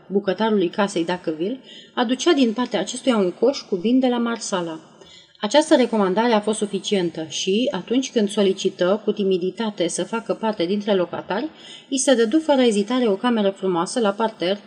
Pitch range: 180-225 Hz